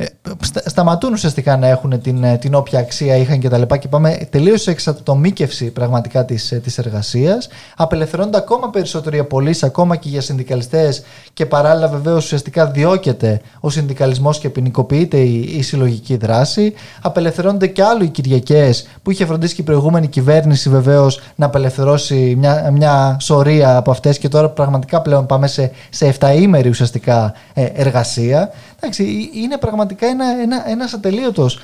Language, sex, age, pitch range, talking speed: Greek, male, 20-39, 135-190 Hz, 140 wpm